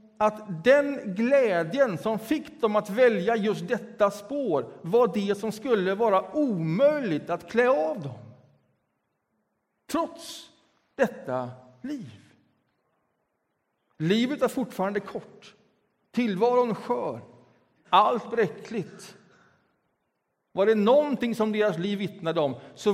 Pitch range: 145-230 Hz